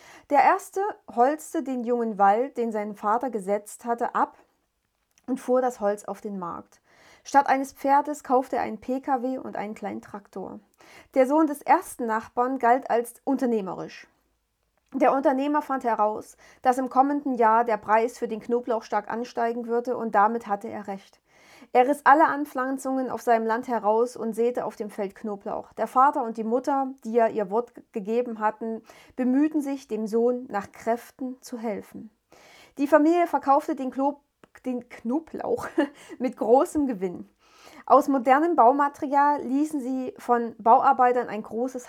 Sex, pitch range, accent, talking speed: female, 220-275 Hz, German, 155 wpm